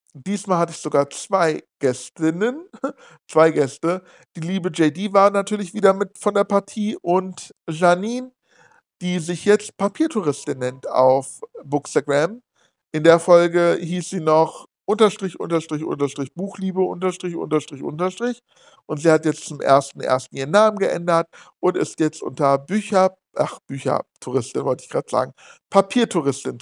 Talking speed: 140 wpm